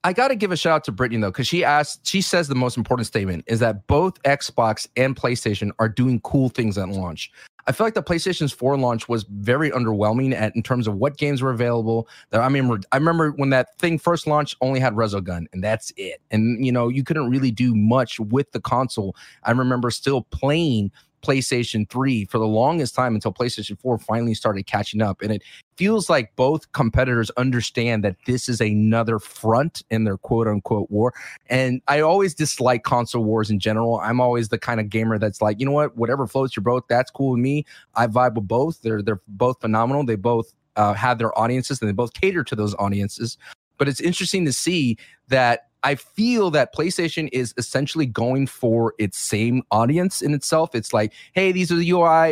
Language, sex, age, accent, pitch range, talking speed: English, male, 30-49, American, 115-145 Hz, 210 wpm